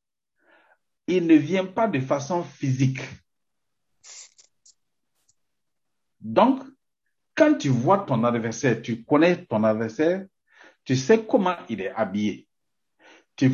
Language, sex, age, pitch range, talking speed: French, male, 60-79, 115-185 Hz, 105 wpm